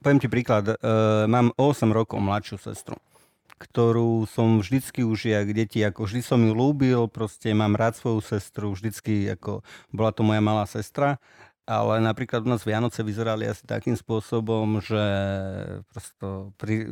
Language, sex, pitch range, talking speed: Slovak, male, 100-115 Hz, 150 wpm